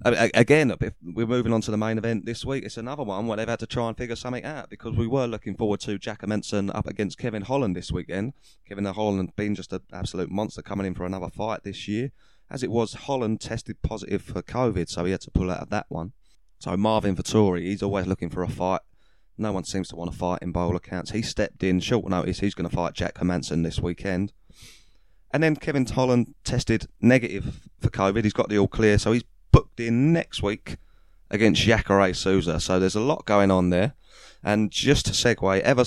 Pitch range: 90-115 Hz